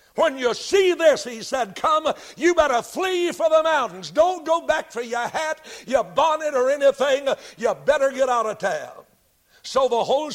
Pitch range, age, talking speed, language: 215-295 Hz, 60-79, 185 wpm, English